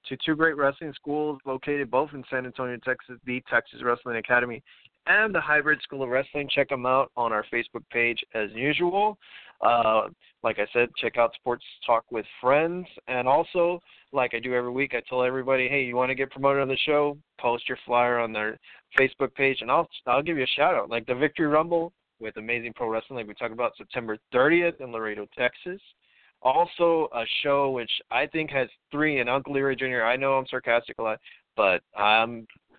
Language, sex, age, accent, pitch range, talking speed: English, male, 20-39, American, 120-140 Hz, 200 wpm